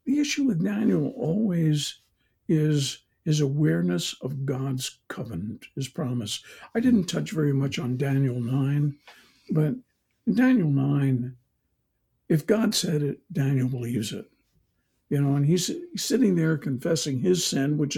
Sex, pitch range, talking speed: male, 130-170 Hz, 140 wpm